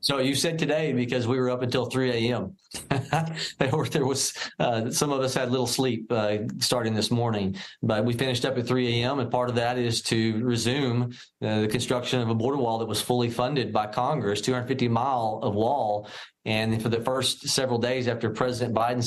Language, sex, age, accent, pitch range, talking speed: English, male, 40-59, American, 110-125 Hz, 200 wpm